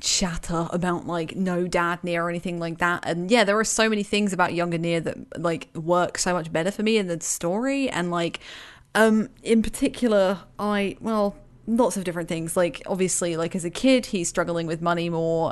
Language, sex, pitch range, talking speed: English, female, 170-215 Hz, 205 wpm